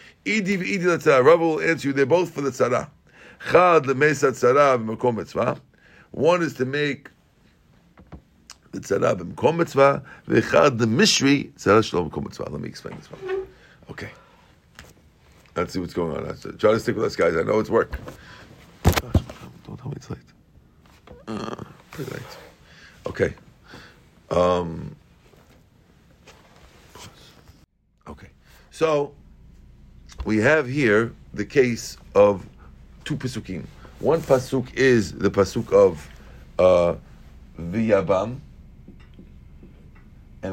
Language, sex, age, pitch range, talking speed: English, male, 50-69, 90-140 Hz, 120 wpm